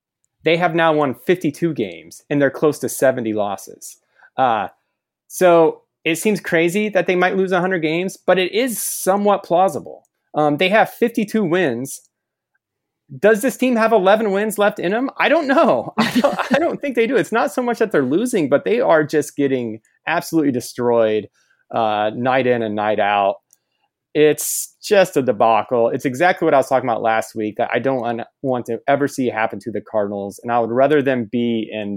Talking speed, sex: 190 wpm, male